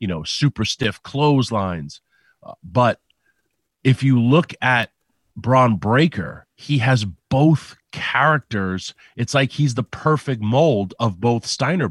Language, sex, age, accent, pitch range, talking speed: English, male, 40-59, American, 105-130 Hz, 130 wpm